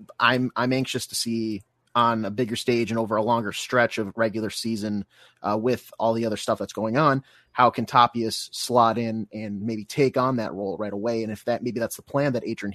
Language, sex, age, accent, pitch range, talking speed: English, male, 30-49, American, 110-125 Hz, 225 wpm